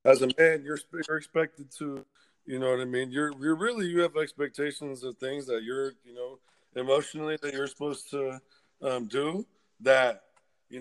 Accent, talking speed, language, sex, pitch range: American, 180 wpm, English, male, 125-150 Hz